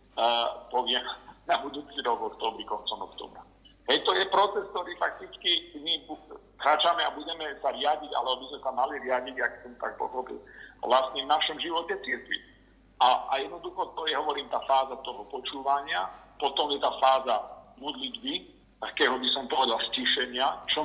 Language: Slovak